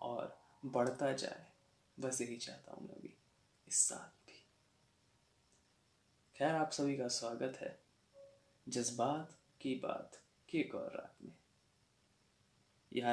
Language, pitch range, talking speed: Hindi, 120-165 Hz, 115 wpm